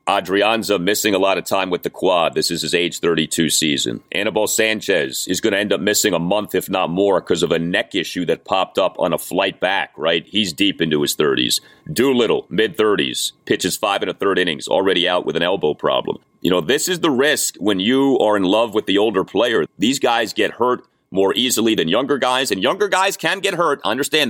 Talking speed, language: 225 wpm, English